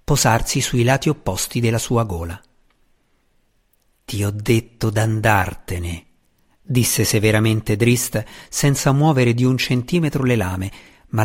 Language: Italian